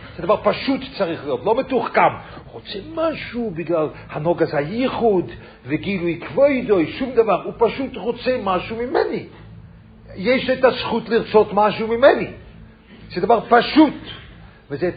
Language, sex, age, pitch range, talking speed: English, male, 50-69, 145-210 Hz, 130 wpm